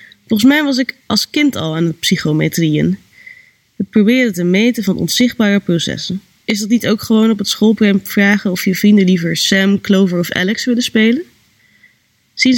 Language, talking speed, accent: Dutch, 175 wpm, Dutch